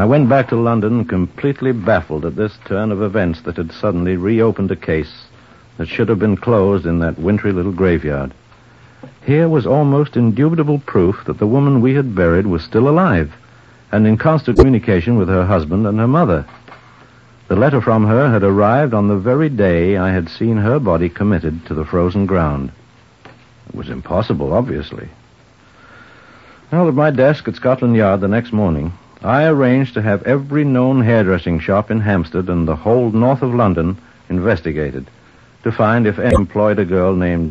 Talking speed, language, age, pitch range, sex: 175 wpm, English, 60-79, 90-120 Hz, male